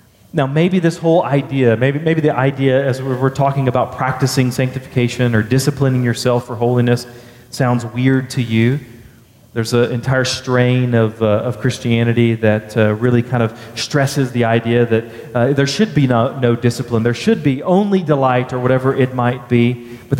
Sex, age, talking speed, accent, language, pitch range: male, 30-49, 175 wpm, American, English, 120-145 Hz